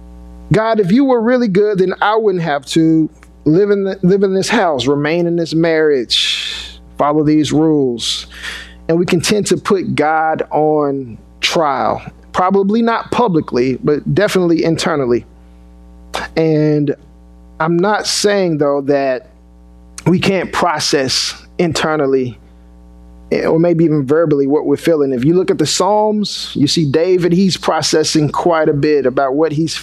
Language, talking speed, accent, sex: English, 150 wpm, American, male